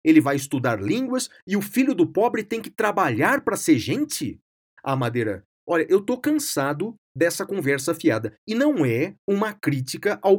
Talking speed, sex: 180 wpm, male